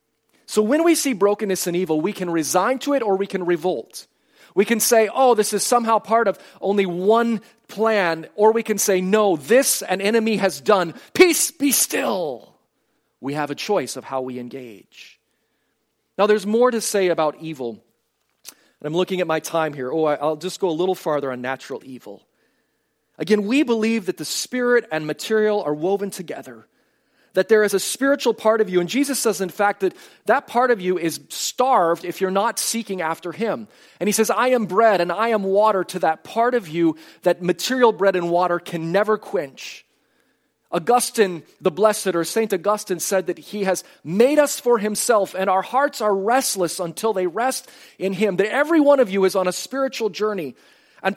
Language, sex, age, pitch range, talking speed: English, male, 40-59, 175-235 Hz, 195 wpm